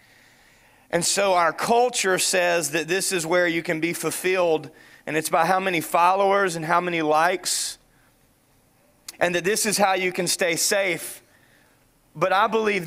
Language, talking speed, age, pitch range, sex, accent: English, 165 wpm, 30-49, 180-215 Hz, male, American